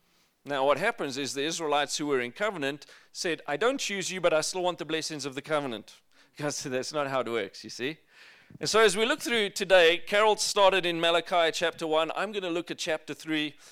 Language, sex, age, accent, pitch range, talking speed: English, male, 40-59, South African, 150-190 Hz, 230 wpm